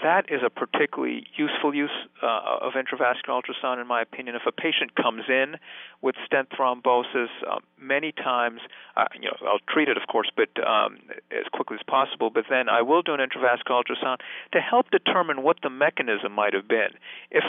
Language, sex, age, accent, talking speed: English, male, 50-69, American, 190 wpm